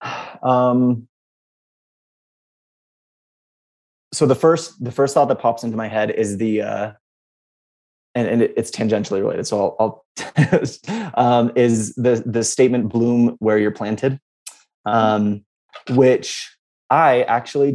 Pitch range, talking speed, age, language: 110-130 Hz, 120 wpm, 20-39, English